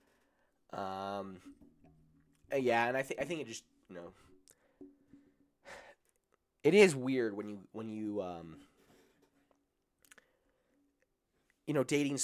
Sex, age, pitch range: male, 20-39, 85-115 Hz